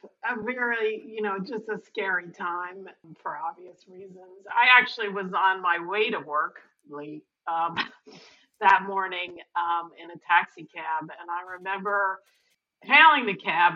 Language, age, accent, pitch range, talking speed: English, 50-69, American, 175-210 Hz, 150 wpm